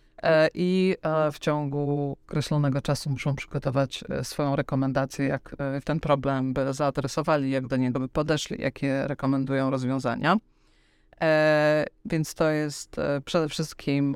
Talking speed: 115 wpm